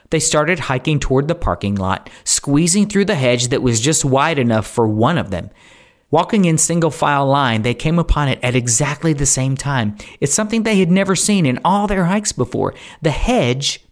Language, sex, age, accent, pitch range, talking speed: English, male, 40-59, American, 110-170 Hz, 205 wpm